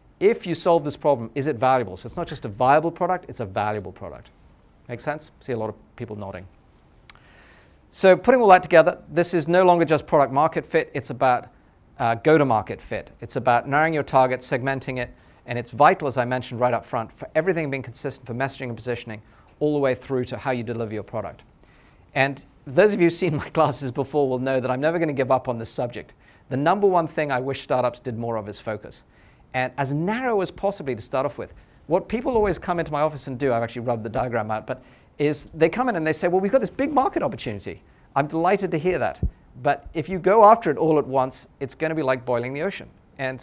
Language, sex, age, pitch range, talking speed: English, male, 40-59, 120-160 Hz, 240 wpm